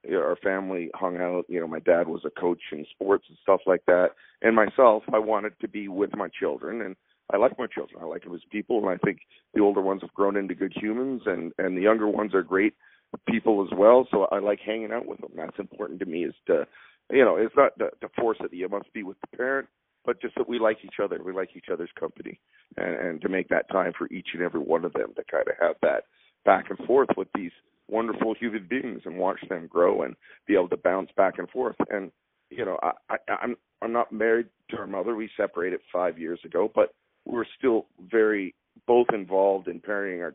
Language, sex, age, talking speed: English, male, 40-59, 240 wpm